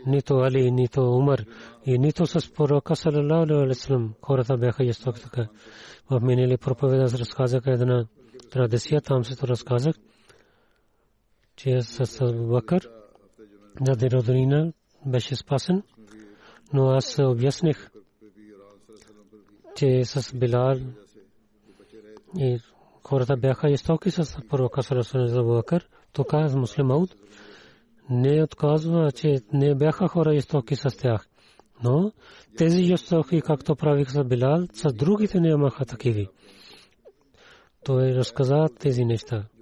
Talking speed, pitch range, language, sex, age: 130 wpm, 120-145 Hz, Bulgarian, male, 40-59